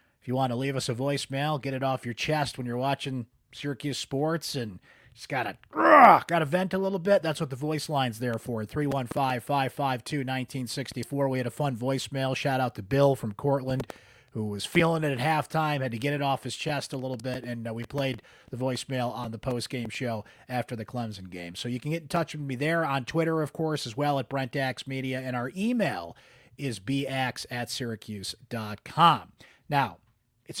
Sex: male